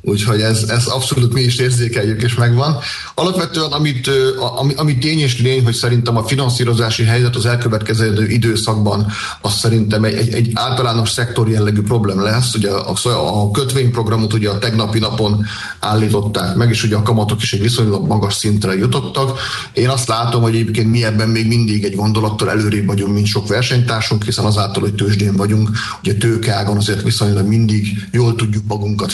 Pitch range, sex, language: 105-125 Hz, male, Hungarian